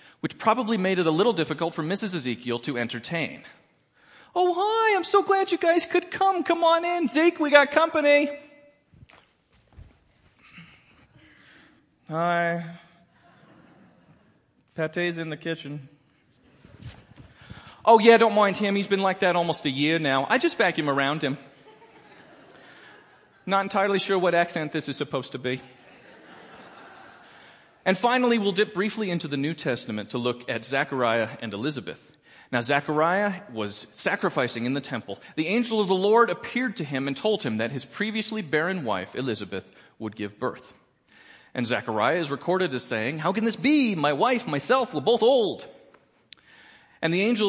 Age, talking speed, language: 40-59, 155 wpm, English